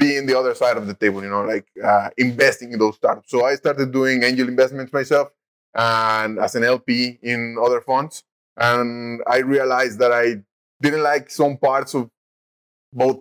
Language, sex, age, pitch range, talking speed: English, male, 20-39, 110-135 Hz, 180 wpm